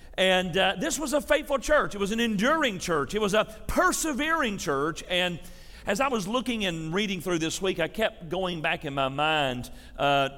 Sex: male